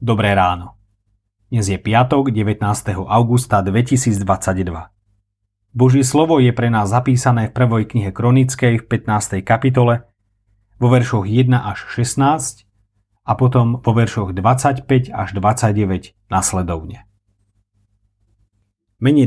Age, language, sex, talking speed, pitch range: 40-59, Slovak, male, 110 wpm, 100-130 Hz